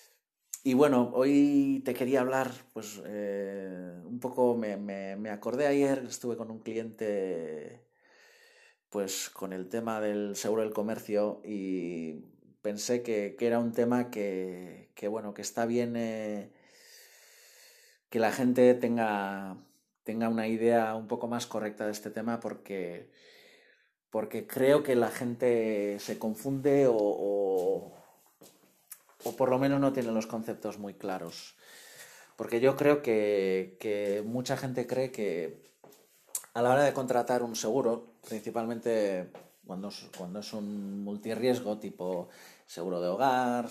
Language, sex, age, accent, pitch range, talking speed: Spanish, male, 30-49, Spanish, 105-130 Hz, 140 wpm